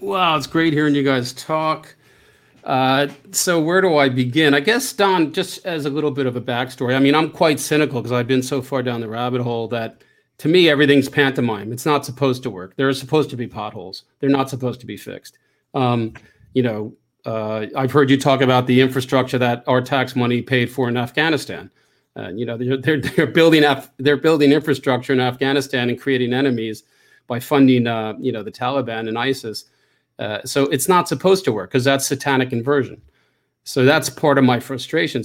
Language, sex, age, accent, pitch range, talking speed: English, male, 40-59, American, 125-145 Hz, 205 wpm